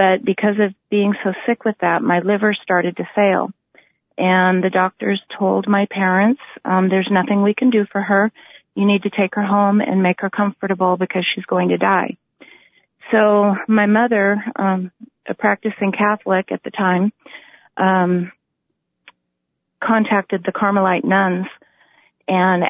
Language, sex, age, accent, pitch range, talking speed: English, female, 40-59, American, 185-205 Hz, 155 wpm